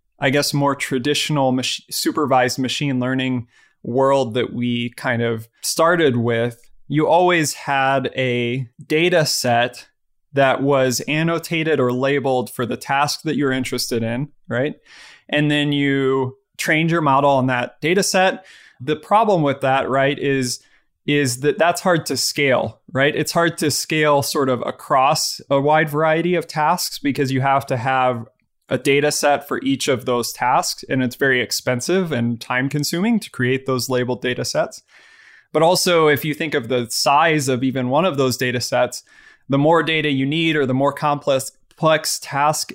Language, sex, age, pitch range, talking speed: English, male, 20-39, 125-150 Hz, 165 wpm